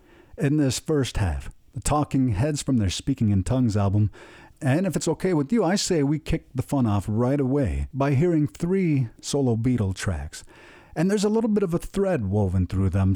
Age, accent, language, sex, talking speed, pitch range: 50-69, American, English, male, 205 wpm, 100-140 Hz